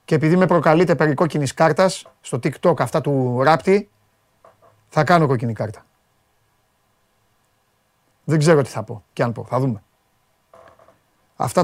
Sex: male